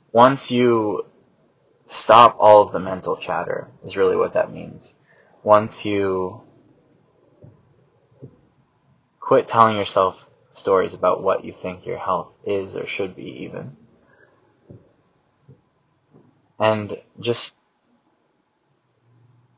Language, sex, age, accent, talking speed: English, male, 20-39, American, 100 wpm